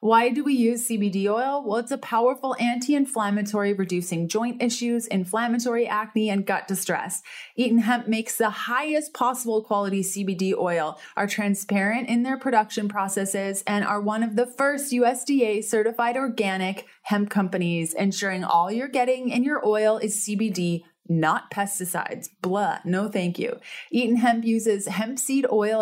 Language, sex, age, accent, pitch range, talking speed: English, female, 30-49, American, 195-240 Hz, 150 wpm